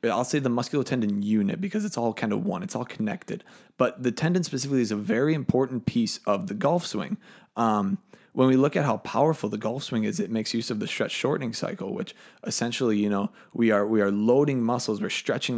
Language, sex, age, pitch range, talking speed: English, male, 20-39, 115-175 Hz, 220 wpm